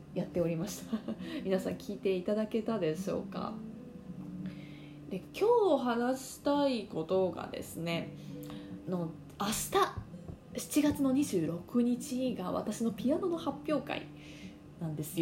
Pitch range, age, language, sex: 180-270 Hz, 20-39, Japanese, female